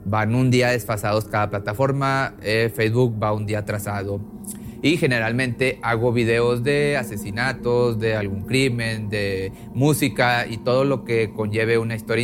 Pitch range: 115-140 Hz